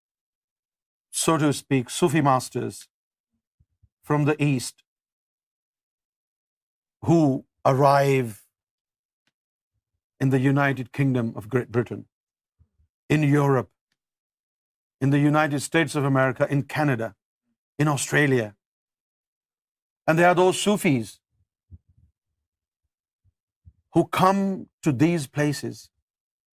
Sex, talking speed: male, 90 wpm